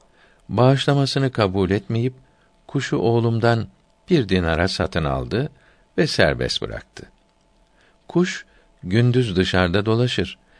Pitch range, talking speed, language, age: 90-115 Hz, 90 wpm, Turkish, 60-79